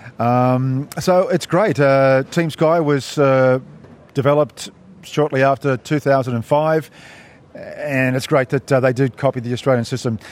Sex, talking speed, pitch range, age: male, 140 wpm, 130-155 Hz, 40-59